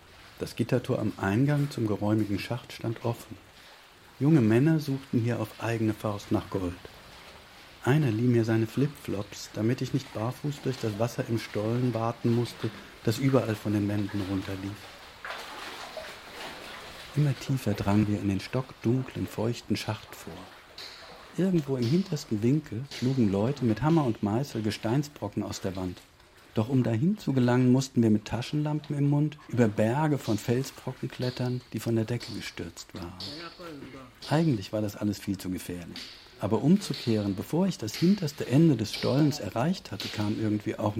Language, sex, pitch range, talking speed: German, male, 105-130 Hz, 155 wpm